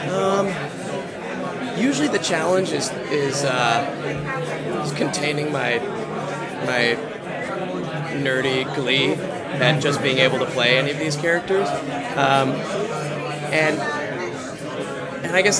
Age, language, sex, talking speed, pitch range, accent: 30-49, English, male, 110 wpm, 130-160 Hz, American